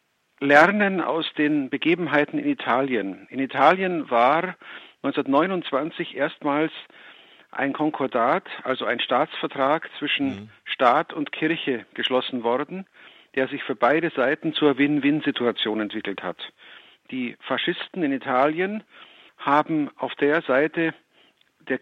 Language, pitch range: German, 130-175 Hz